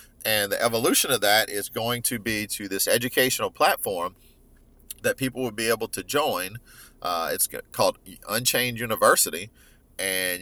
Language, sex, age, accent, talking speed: English, male, 40-59, American, 150 wpm